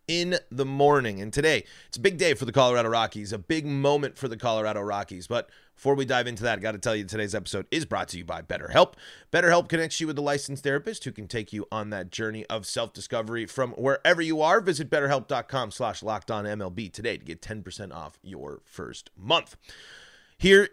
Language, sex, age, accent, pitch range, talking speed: English, male, 30-49, American, 115-160 Hz, 210 wpm